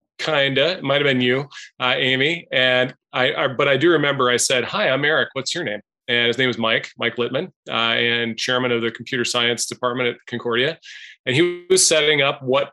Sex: male